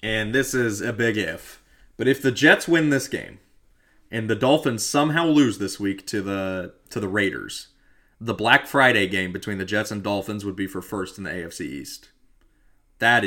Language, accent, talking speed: English, American, 195 wpm